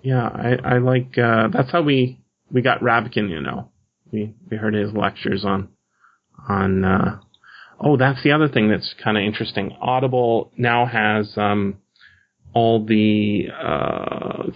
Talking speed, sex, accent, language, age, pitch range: 155 wpm, male, American, English, 30-49, 105-125 Hz